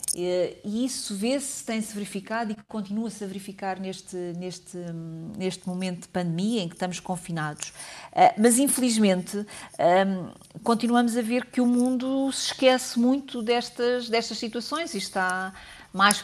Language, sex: Portuguese, female